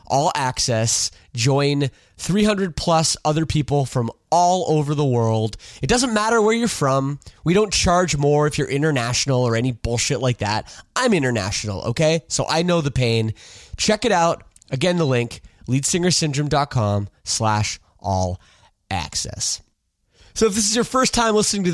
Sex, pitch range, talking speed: male, 115-160 Hz, 160 wpm